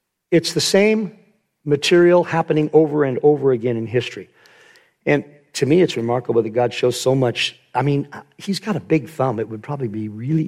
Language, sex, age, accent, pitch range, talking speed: English, male, 50-69, American, 130-185 Hz, 190 wpm